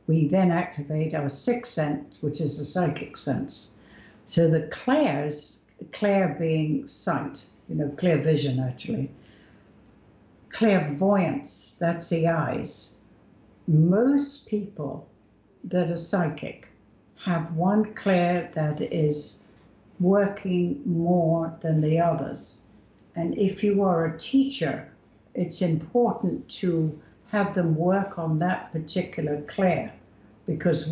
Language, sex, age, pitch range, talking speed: English, female, 60-79, 150-190 Hz, 115 wpm